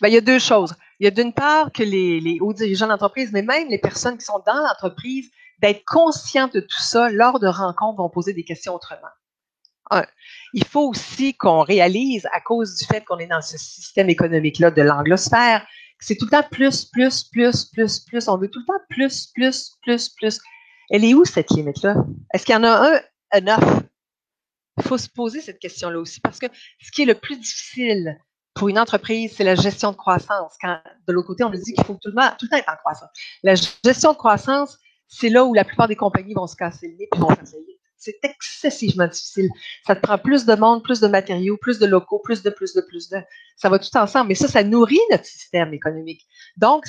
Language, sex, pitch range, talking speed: French, female, 190-260 Hz, 230 wpm